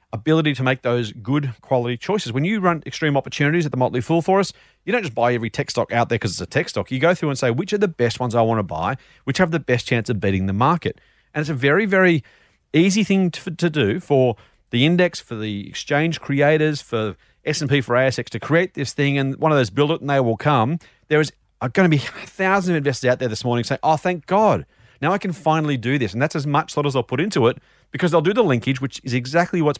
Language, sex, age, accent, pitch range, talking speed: English, male, 40-59, Australian, 120-160 Hz, 265 wpm